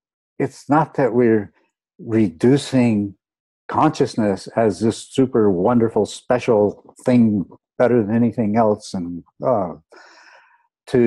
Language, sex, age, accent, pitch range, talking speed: English, male, 60-79, American, 95-120 Hz, 105 wpm